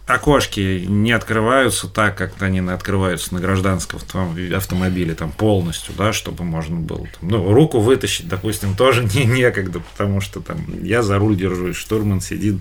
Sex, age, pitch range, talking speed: male, 30-49, 90-105 Hz, 160 wpm